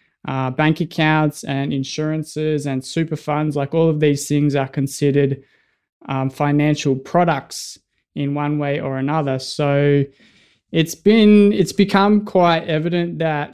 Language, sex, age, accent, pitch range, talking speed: English, male, 20-39, Australian, 140-155 Hz, 135 wpm